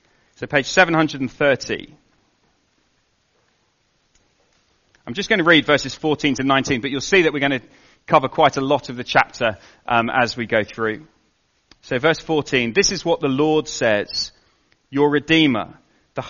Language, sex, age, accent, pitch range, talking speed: English, male, 30-49, British, 125-155 Hz, 160 wpm